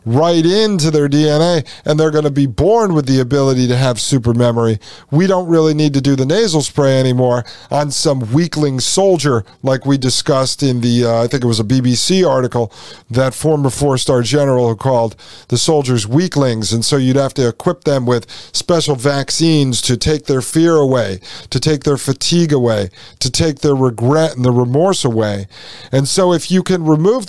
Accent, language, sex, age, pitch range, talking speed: American, English, male, 40-59, 125-155 Hz, 190 wpm